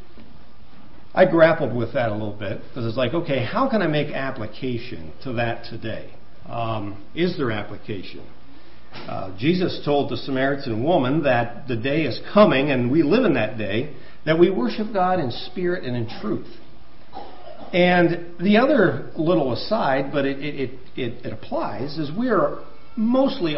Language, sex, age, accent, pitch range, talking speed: English, male, 50-69, American, 110-170 Hz, 160 wpm